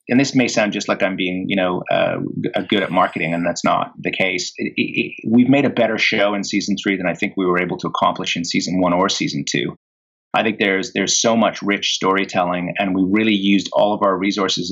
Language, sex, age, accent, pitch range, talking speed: English, male, 30-49, American, 95-120 Hz, 245 wpm